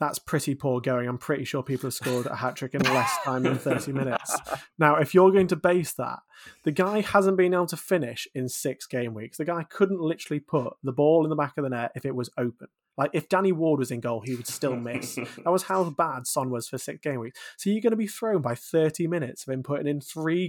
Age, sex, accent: 20-39, male, British